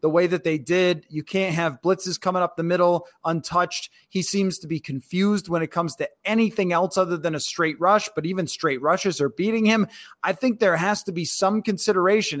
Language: English